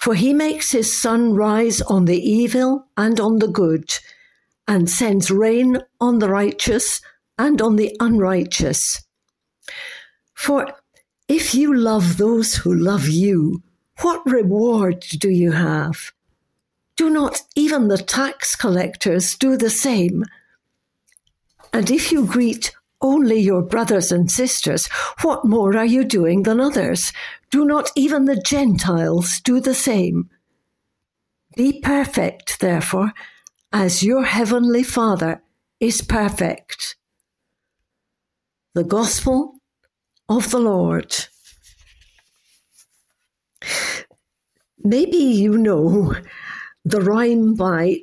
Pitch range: 185-260 Hz